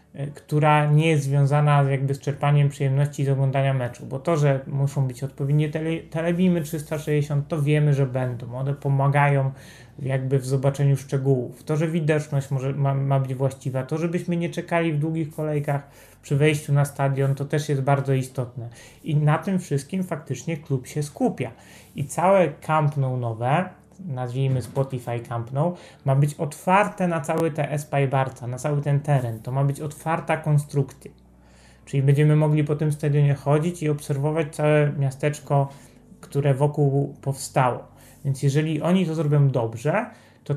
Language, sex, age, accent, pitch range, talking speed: Polish, male, 30-49, native, 135-155 Hz, 155 wpm